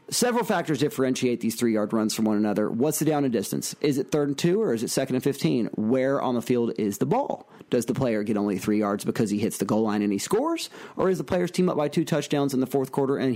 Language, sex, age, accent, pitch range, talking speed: English, male, 40-59, American, 115-155 Hz, 280 wpm